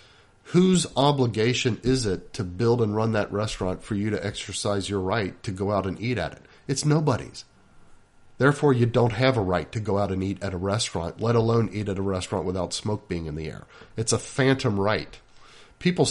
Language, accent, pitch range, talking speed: English, American, 100-130 Hz, 210 wpm